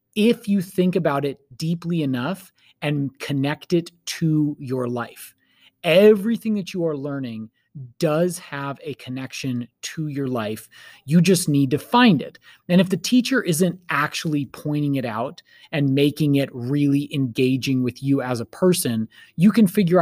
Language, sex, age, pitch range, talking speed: English, male, 30-49, 130-165 Hz, 160 wpm